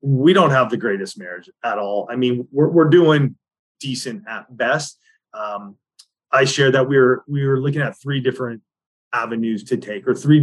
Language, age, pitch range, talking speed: English, 30-49, 120-145 Hz, 190 wpm